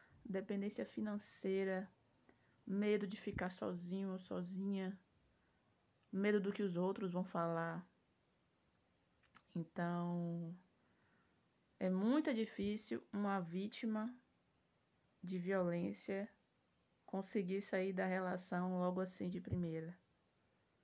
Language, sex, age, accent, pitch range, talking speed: Portuguese, female, 20-39, Brazilian, 180-215 Hz, 90 wpm